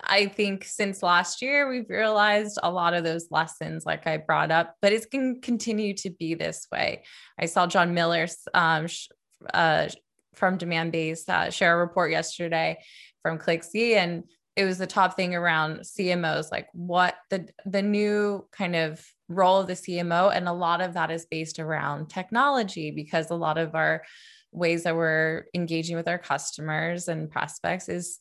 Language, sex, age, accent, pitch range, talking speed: English, female, 20-39, American, 165-205 Hz, 175 wpm